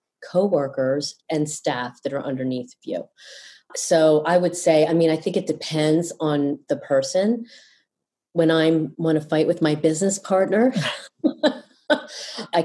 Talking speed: 140 wpm